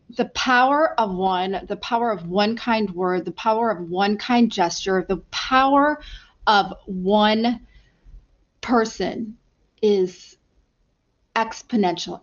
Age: 30-49